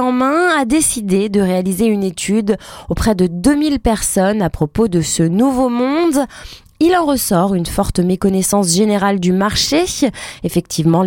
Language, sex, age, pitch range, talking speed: French, female, 20-39, 180-245 Hz, 150 wpm